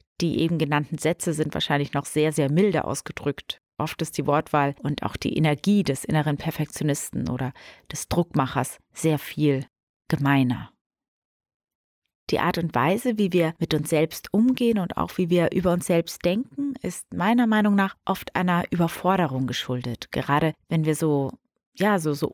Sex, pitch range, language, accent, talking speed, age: female, 145-185 Hz, German, German, 160 wpm, 30-49